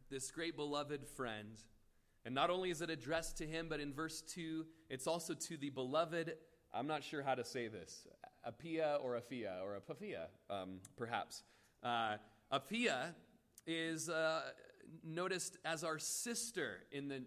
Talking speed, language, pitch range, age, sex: 155 wpm, English, 130-165 Hz, 30-49, male